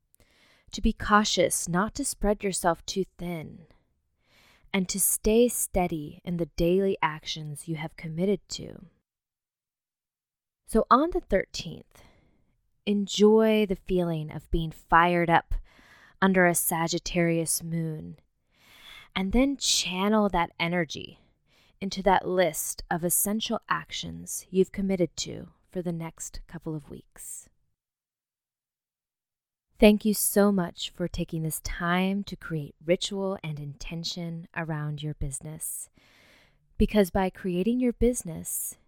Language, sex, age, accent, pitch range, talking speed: English, female, 20-39, American, 165-195 Hz, 120 wpm